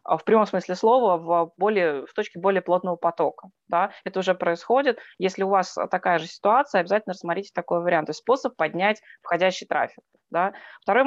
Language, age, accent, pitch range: Russian, 20-39, native, 175-210 Hz